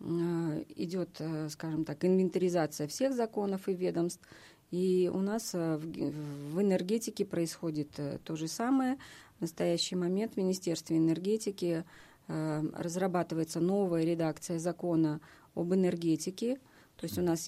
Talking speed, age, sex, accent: 120 wpm, 30-49, female, native